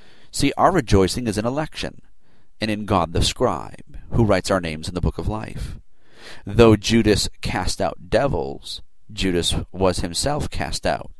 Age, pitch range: 50-69, 90-115 Hz